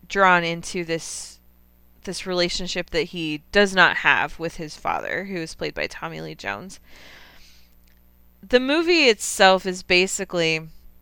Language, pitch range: English, 150-185 Hz